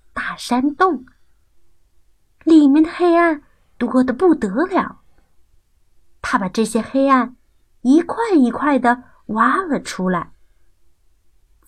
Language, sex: Chinese, female